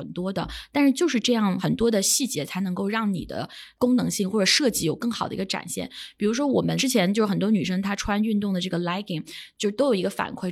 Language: Chinese